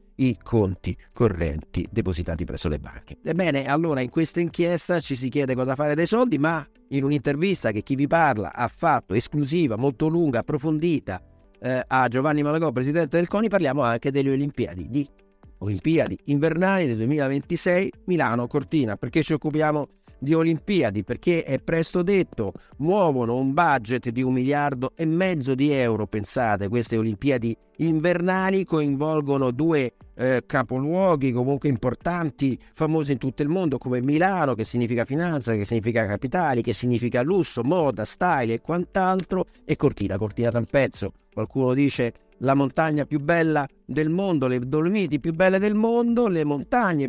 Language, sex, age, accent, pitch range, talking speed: Italian, male, 50-69, native, 120-165 Hz, 155 wpm